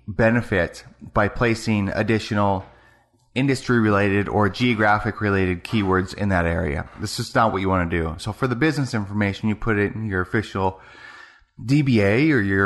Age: 30-49